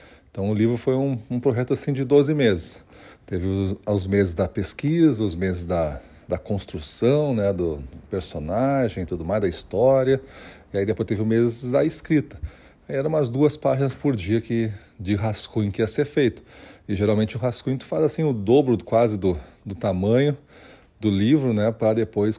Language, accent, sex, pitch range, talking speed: Portuguese, Brazilian, male, 95-120 Hz, 180 wpm